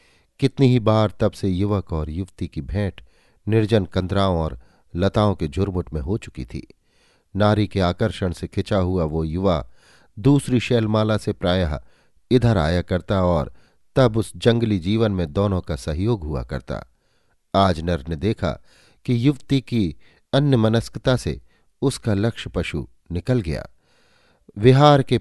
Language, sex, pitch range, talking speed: Hindi, male, 85-115 Hz, 150 wpm